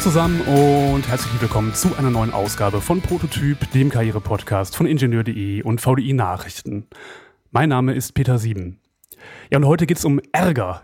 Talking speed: 160 wpm